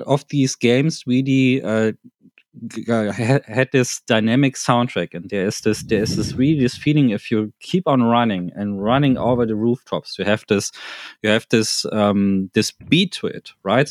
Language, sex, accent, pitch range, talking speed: German, male, German, 105-135 Hz, 175 wpm